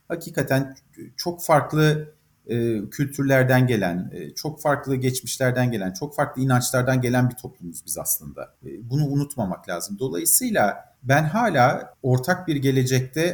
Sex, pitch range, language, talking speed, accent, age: male, 125-150 Hz, Turkish, 130 wpm, native, 50-69